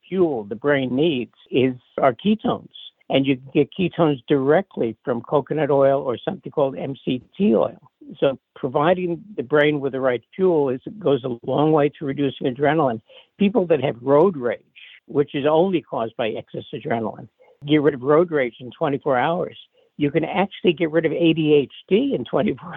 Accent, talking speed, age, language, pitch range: American, 170 wpm, 60-79, English, 125-160 Hz